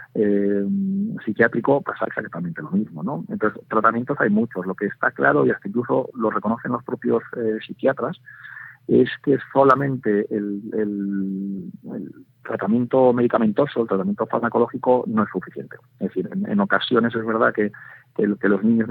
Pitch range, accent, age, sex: 95-120 Hz, Spanish, 40-59, male